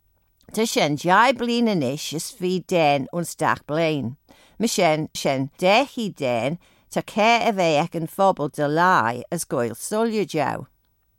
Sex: female